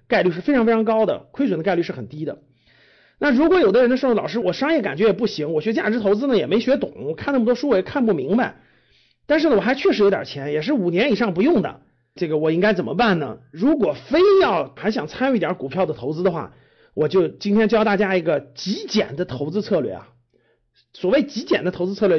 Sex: male